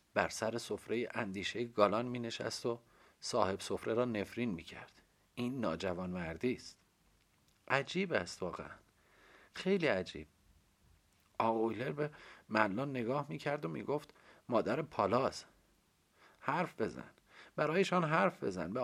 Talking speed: 125 wpm